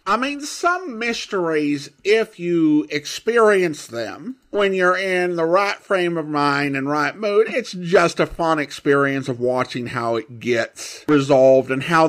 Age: 50-69